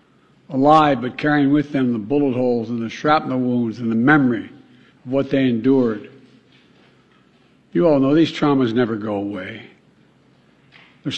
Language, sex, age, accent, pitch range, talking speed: English, male, 60-79, American, 125-155 Hz, 150 wpm